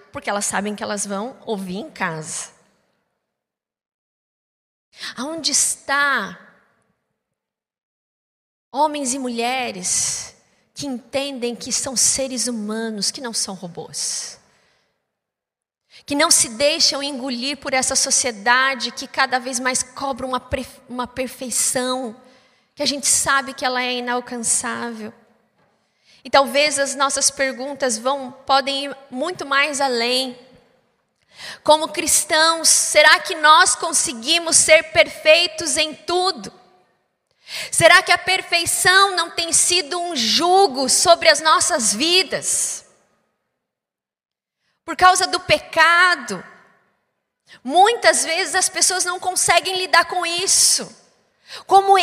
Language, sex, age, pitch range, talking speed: Portuguese, female, 20-39, 255-335 Hz, 110 wpm